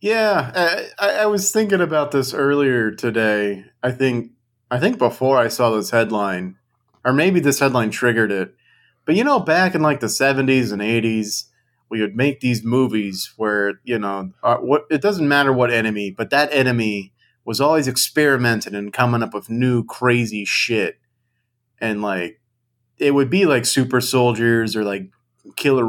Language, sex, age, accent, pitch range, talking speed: English, male, 30-49, American, 110-135 Hz, 165 wpm